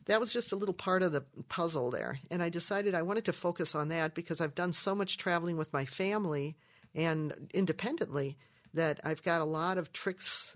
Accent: American